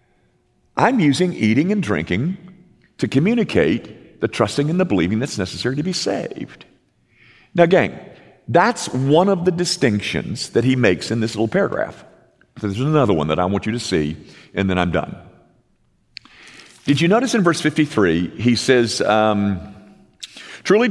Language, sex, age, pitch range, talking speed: English, male, 50-69, 110-170 Hz, 155 wpm